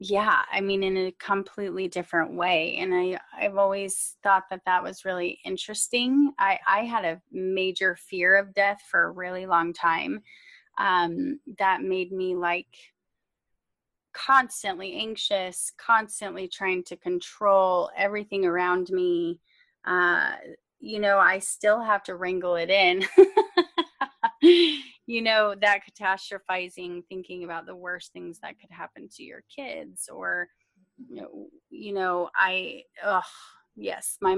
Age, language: 20-39, English